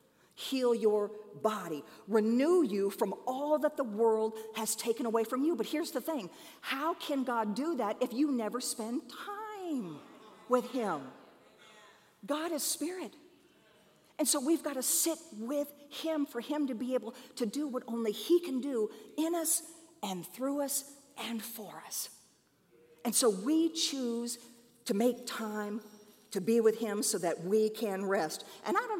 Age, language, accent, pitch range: 50-69, English, American, 220-305 Hz